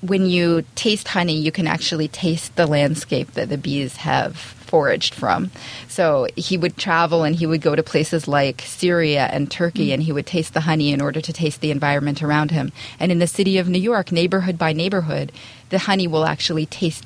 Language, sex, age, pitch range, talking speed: English, female, 30-49, 150-185 Hz, 210 wpm